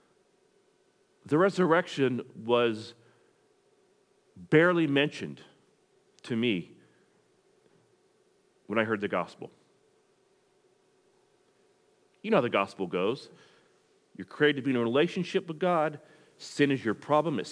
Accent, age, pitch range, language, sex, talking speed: American, 40-59, 115-180 Hz, English, male, 110 wpm